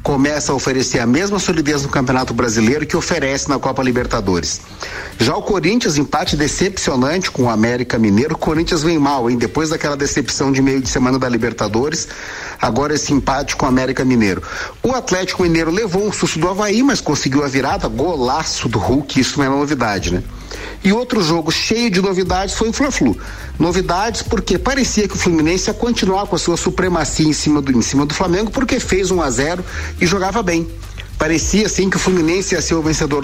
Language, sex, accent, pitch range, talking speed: Portuguese, male, Brazilian, 135-190 Hz, 195 wpm